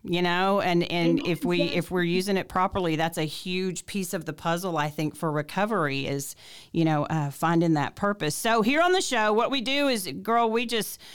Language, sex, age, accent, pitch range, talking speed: English, female, 40-59, American, 160-205 Hz, 220 wpm